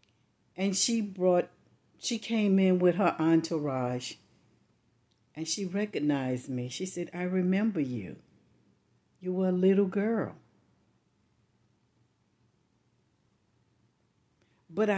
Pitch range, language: 155-210 Hz, English